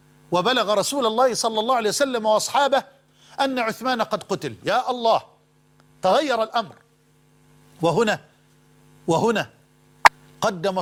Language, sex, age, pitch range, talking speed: Arabic, male, 50-69, 190-245 Hz, 105 wpm